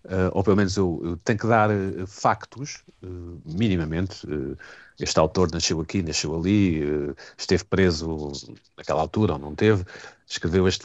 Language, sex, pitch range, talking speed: Portuguese, male, 85-105 Hz, 140 wpm